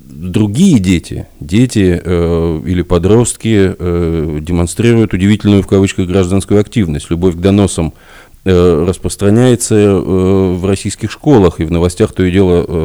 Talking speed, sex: 130 wpm, male